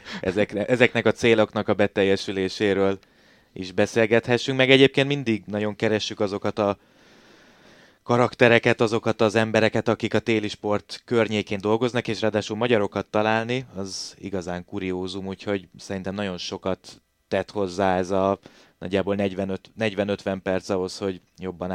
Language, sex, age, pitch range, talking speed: Hungarian, male, 20-39, 95-110 Hz, 125 wpm